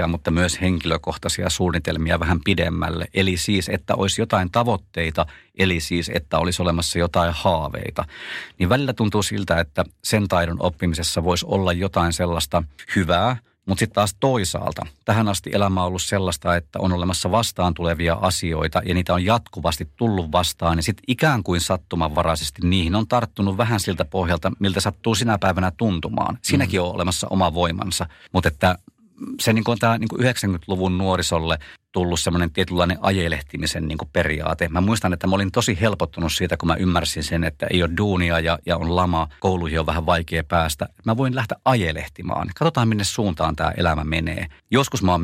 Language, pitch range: Finnish, 85-100 Hz